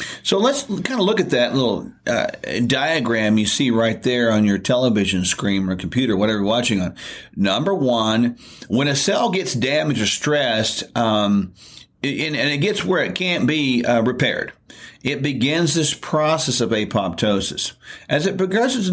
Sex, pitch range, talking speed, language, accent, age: male, 120-165 Hz, 170 wpm, English, American, 50-69